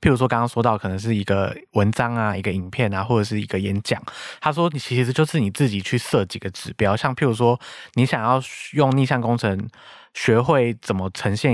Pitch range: 100-130 Hz